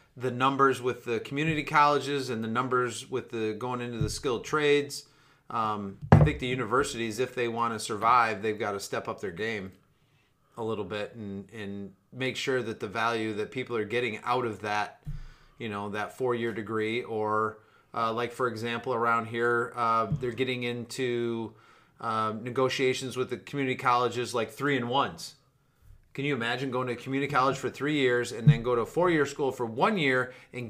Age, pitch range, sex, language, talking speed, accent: 30-49, 110-135 Hz, male, English, 195 wpm, American